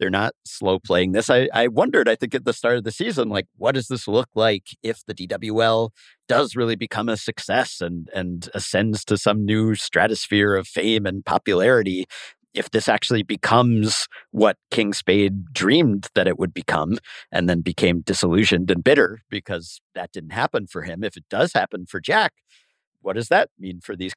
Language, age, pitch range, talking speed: English, 50-69, 95-110 Hz, 190 wpm